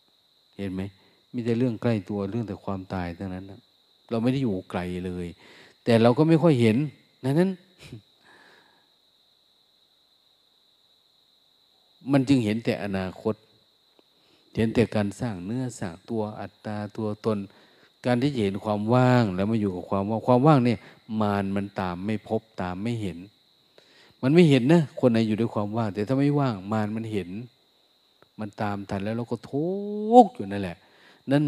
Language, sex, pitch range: Thai, male, 100-125 Hz